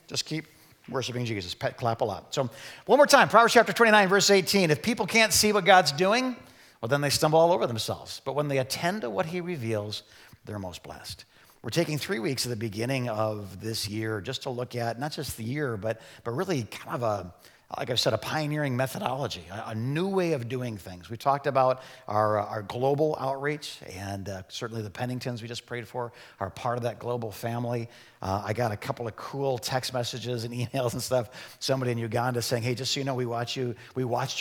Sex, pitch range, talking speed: male, 115-155 Hz, 220 wpm